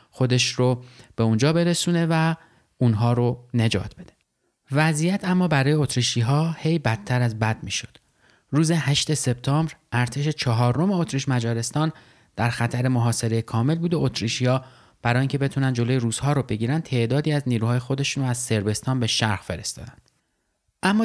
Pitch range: 120-155 Hz